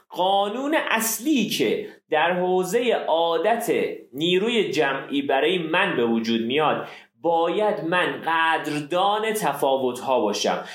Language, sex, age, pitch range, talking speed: Persian, male, 30-49, 135-195 Hz, 105 wpm